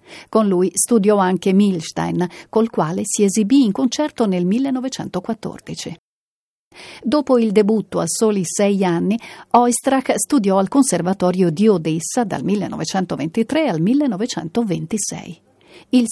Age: 50-69